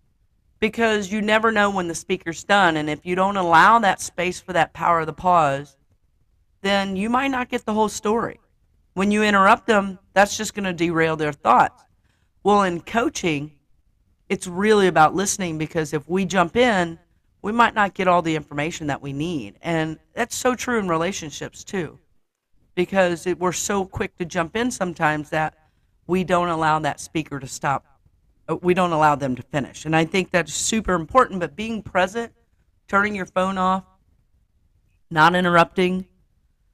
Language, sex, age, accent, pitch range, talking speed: English, female, 50-69, American, 155-200 Hz, 175 wpm